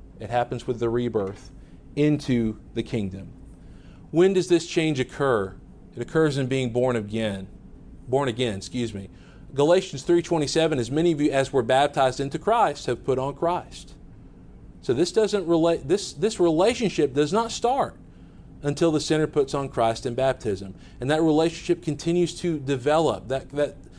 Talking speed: 160 wpm